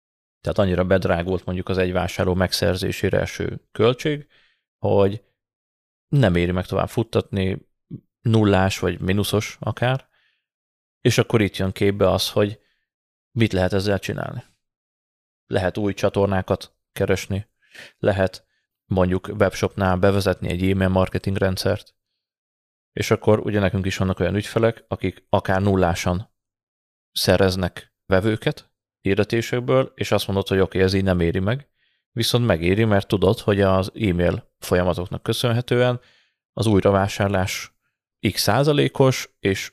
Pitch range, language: 95-110 Hz, Hungarian